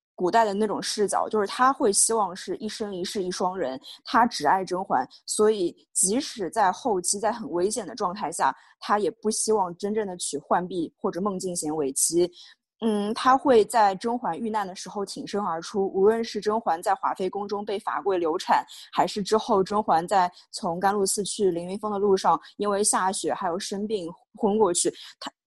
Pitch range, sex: 185-230 Hz, female